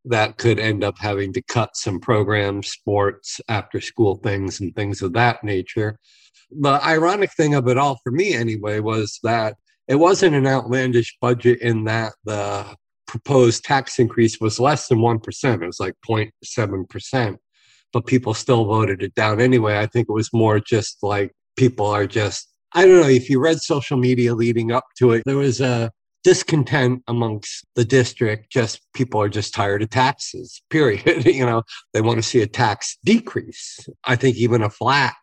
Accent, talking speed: American, 180 wpm